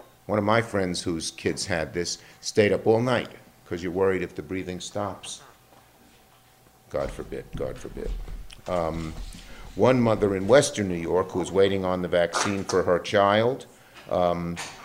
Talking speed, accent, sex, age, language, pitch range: 160 wpm, American, male, 50-69, English, 85-110 Hz